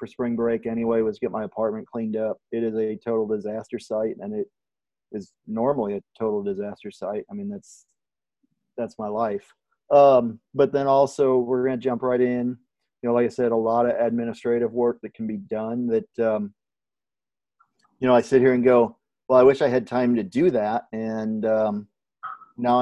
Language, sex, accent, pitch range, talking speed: English, male, American, 115-130 Hz, 195 wpm